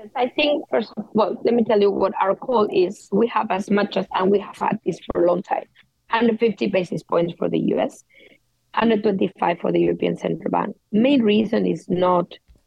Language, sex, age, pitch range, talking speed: English, female, 20-39, 180-215 Hz, 205 wpm